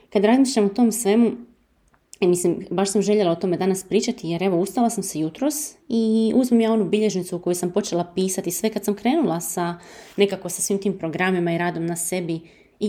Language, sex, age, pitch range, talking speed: English, female, 20-39, 180-240 Hz, 195 wpm